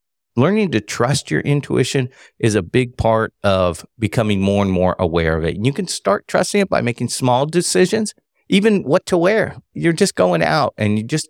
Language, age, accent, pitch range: English, 50-69, American, 95-130 Hz